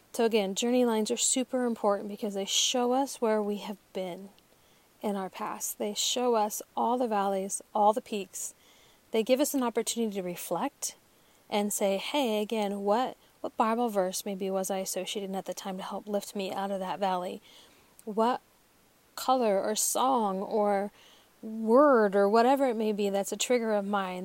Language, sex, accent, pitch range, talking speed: English, female, American, 195-235 Hz, 180 wpm